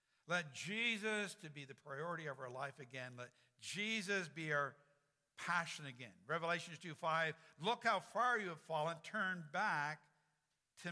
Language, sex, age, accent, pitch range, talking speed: English, male, 60-79, American, 150-190 Hz, 155 wpm